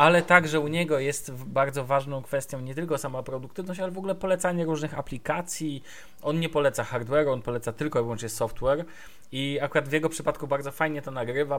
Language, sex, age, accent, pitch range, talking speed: Polish, male, 20-39, native, 120-145 Hz, 190 wpm